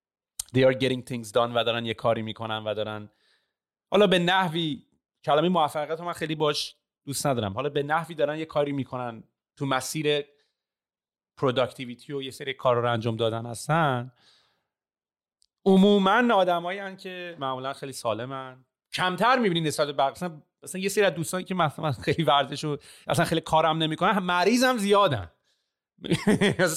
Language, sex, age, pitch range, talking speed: Persian, male, 30-49, 130-185 Hz, 165 wpm